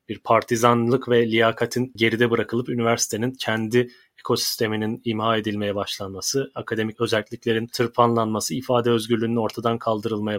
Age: 30-49